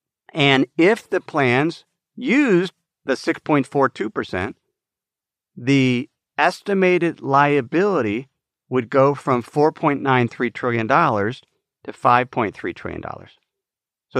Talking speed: 80 wpm